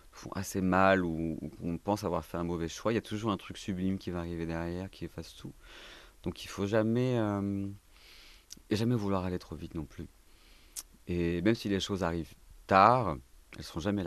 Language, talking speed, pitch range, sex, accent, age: French, 210 wpm, 80-95 Hz, male, French, 30-49